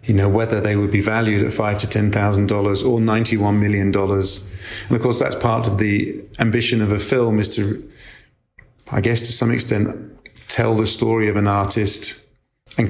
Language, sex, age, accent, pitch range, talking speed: English, male, 40-59, British, 100-120 Hz, 200 wpm